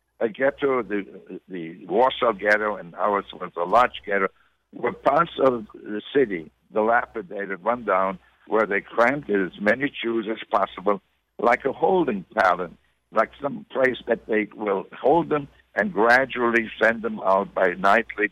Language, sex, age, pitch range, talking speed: English, male, 60-79, 105-125 Hz, 155 wpm